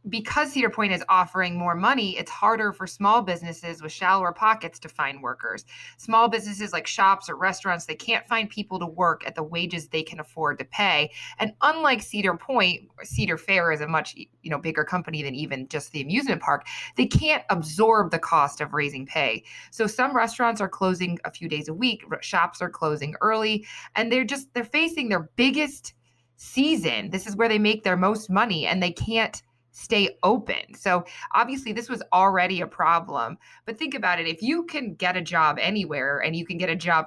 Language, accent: English, American